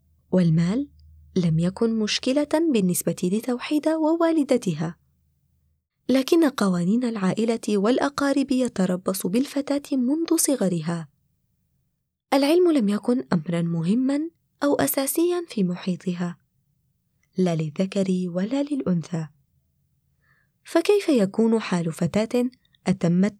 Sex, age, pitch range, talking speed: female, 20-39, 180-275 Hz, 85 wpm